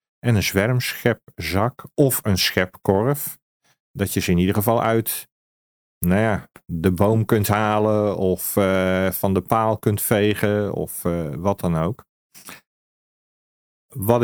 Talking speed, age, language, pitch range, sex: 135 wpm, 40-59, Dutch, 90-120 Hz, male